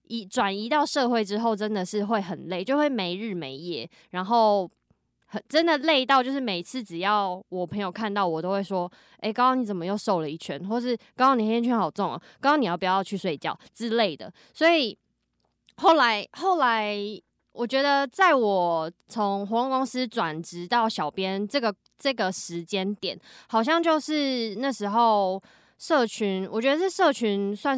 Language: Chinese